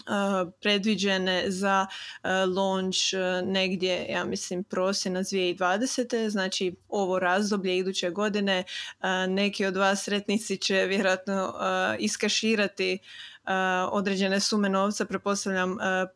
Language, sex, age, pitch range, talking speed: Croatian, female, 20-39, 190-210 Hz, 90 wpm